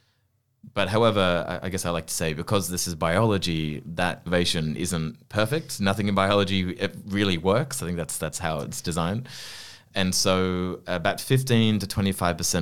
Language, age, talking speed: English, 20-39, 150 wpm